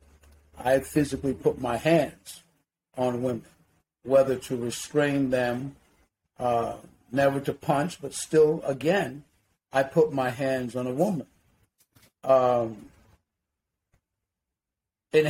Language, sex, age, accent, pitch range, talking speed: English, male, 50-69, American, 115-140 Hz, 105 wpm